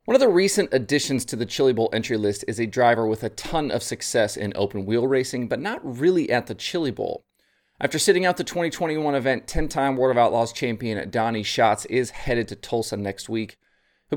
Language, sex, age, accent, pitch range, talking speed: English, male, 30-49, American, 100-135 Hz, 210 wpm